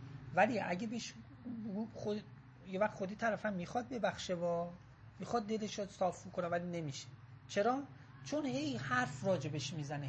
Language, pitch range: Persian, 155-220 Hz